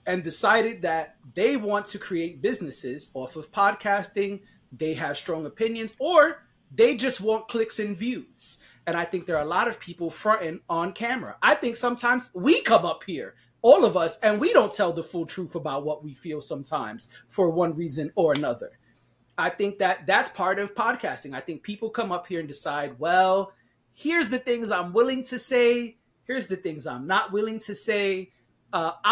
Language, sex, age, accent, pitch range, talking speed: English, male, 30-49, American, 155-215 Hz, 195 wpm